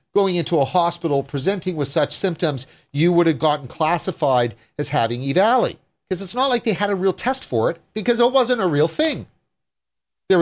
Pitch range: 115-180 Hz